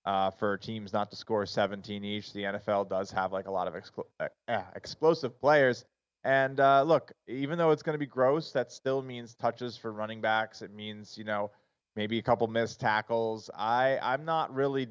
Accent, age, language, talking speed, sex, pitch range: American, 20-39, English, 200 wpm, male, 100-115 Hz